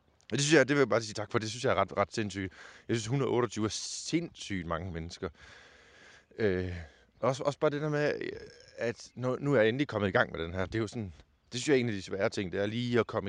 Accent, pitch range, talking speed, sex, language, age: Danish, 90-125 Hz, 275 wpm, male, English, 20-39